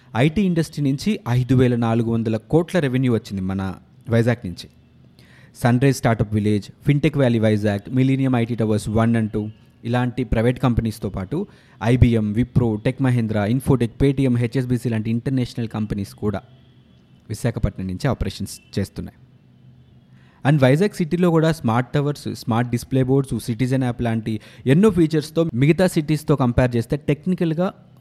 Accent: native